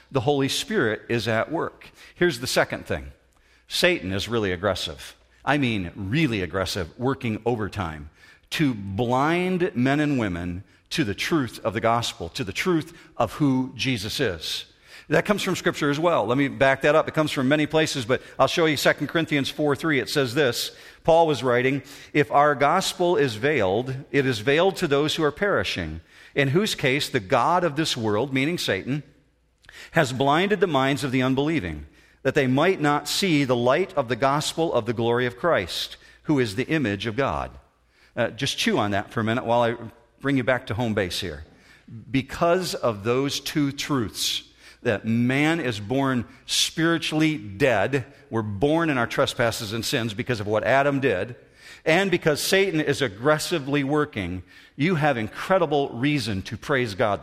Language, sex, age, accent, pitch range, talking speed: English, male, 50-69, American, 115-150 Hz, 180 wpm